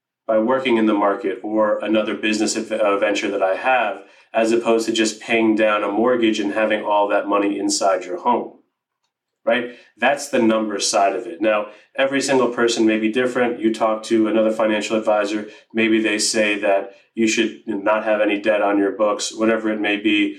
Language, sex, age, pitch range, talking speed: English, male, 30-49, 105-120 Hz, 190 wpm